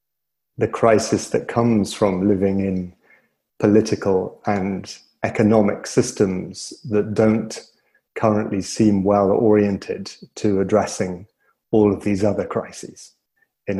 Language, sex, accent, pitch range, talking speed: English, male, British, 100-120 Hz, 105 wpm